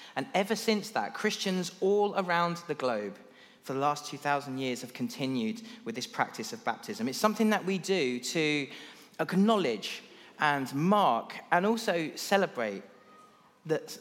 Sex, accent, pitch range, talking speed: male, British, 140-210 Hz, 145 wpm